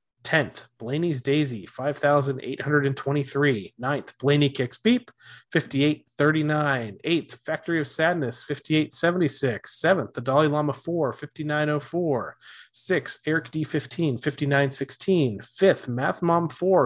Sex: male